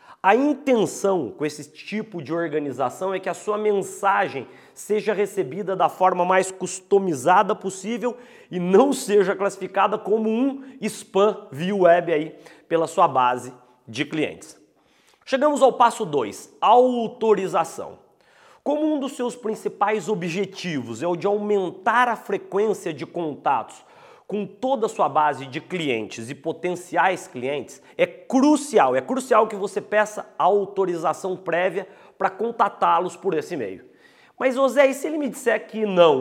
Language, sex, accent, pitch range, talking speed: Portuguese, male, Brazilian, 175-220 Hz, 145 wpm